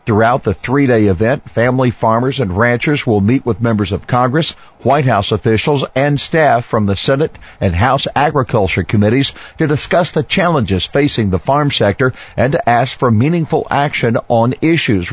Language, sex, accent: English, male, American